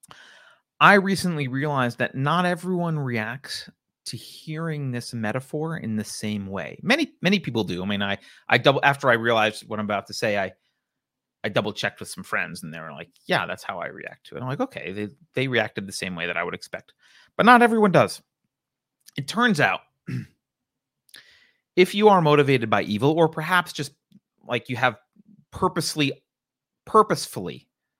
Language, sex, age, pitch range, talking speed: English, male, 30-49, 120-170 Hz, 180 wpm